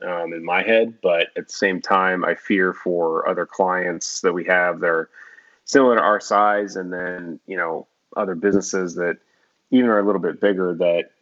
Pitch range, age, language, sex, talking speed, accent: 85-100 Hz, 30-49, English, male, 200 wpm, American